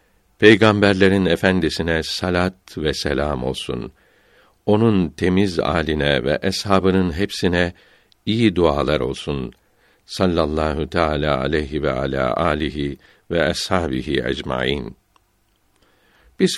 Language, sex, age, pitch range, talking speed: Turkish, male, 60-79, 80-100 Hz, 90 wpm